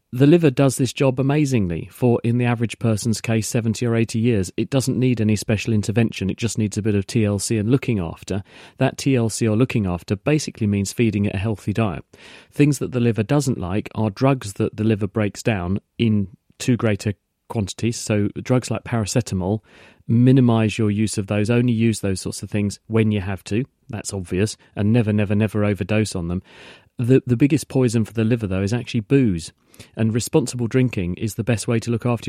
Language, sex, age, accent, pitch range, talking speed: English, male, 40-59, British, 105-120 Hz, 205 wpm